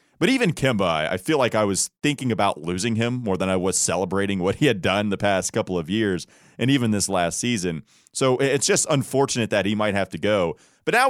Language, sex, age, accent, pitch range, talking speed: English, male, 30-49, American, 95-135 Hz, 230 wpm